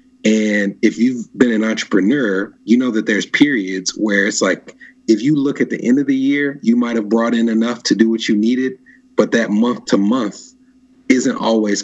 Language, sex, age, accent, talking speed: English, male, 30-49, American, 210 wpm